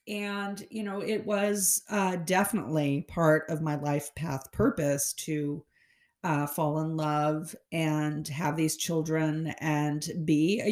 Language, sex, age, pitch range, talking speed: English, female, 40-59, 160-205 Hz, 140 wpm